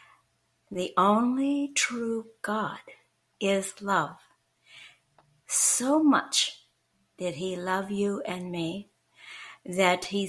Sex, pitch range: female, 180-220 Hz